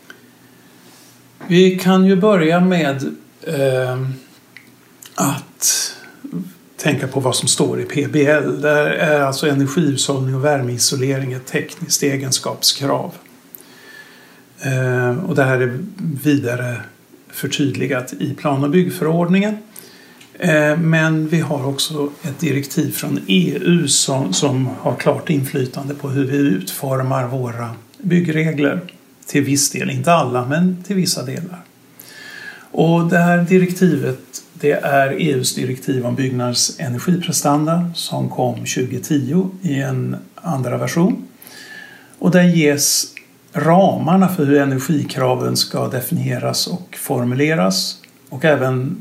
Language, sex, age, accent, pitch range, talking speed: Swedish, male, 60-79, native, 130-170 Hz, 110 wpm